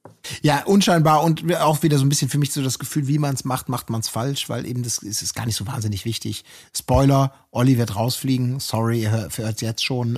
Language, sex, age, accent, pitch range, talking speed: German, male, 30-49, German, 115-145 Hz, 240 wpm